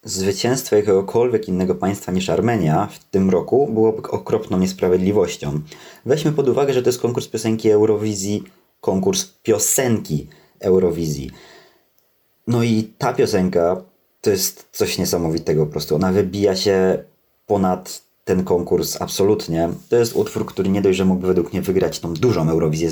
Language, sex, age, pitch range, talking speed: Polish, male, 20-39, 90-110 Hz, 145 wpm